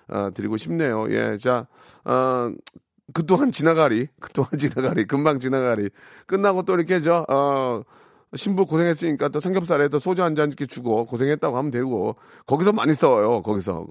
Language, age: Korean, 40-59